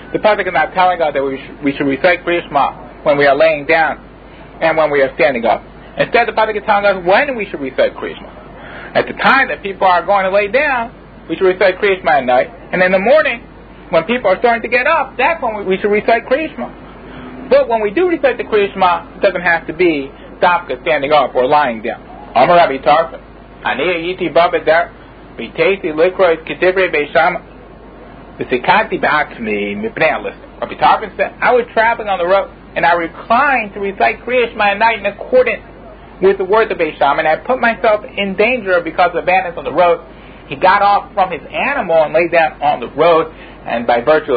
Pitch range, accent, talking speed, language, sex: 155-220 Hz, American, 185 wpm, English, male